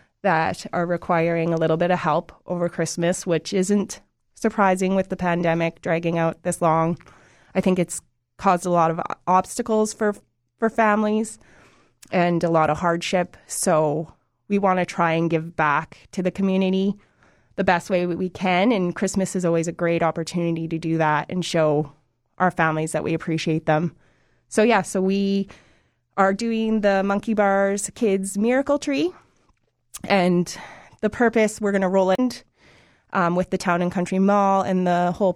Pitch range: 165-195 Hz